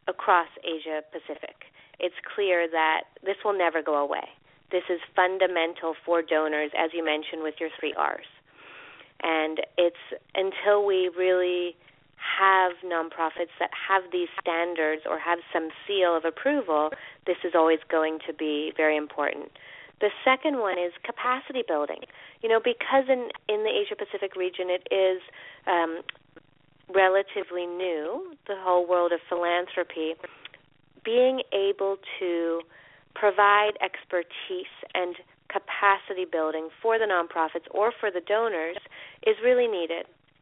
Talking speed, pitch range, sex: 135 wpm, 165-210 Hz, female